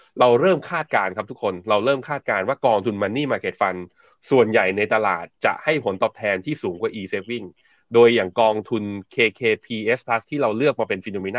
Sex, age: male, 20-39